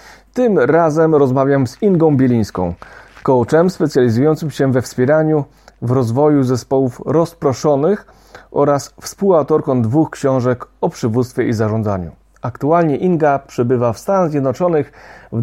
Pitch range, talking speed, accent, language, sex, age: 125-155 Hz, 115 wpm, native, Polish, male, 40-59